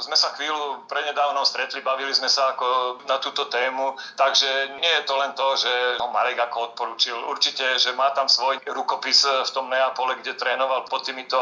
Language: Slovak